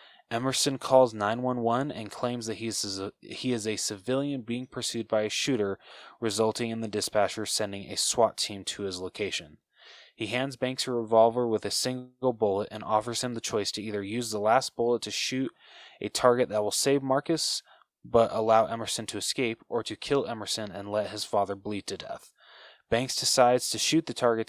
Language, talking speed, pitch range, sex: English, 185 wpm, 110-125 Hz, male